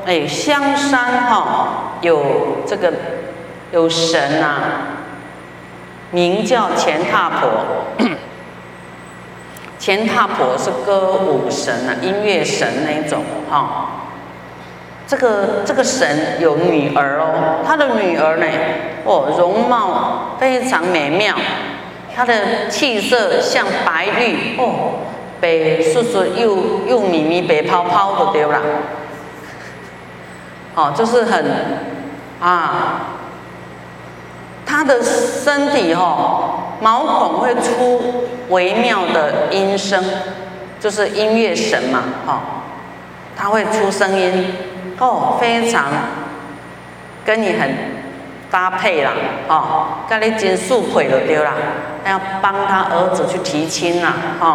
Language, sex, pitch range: Chinese, female, 150-240 Hz